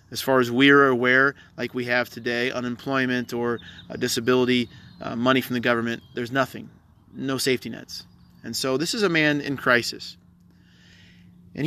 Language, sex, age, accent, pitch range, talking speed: English, male, 30-49, American, 110-130 Hz, 160 wpm